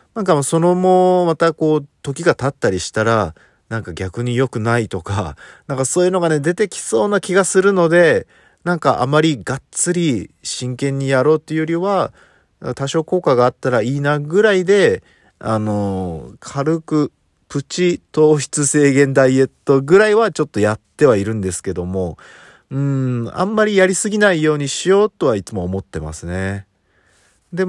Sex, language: male, Japanese